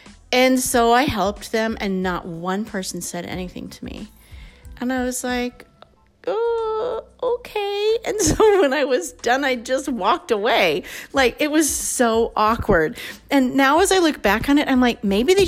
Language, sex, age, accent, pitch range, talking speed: English, female, 30-49, American, 180-270 Hz, 180 wpm